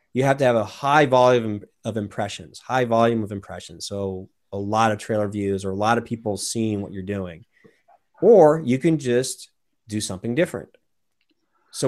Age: 30-49